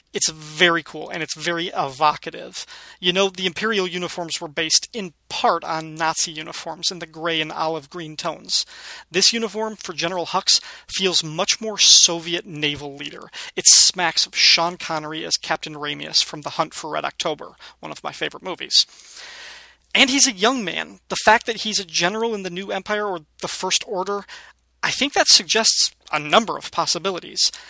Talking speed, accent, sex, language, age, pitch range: 180 wpm, American, male, English, 30-49, 165-205 Hz